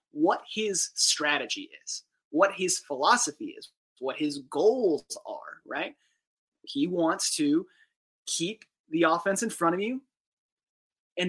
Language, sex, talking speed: English, male, 130 wpm